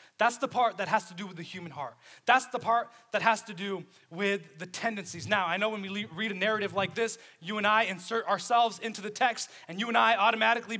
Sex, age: male, 20-39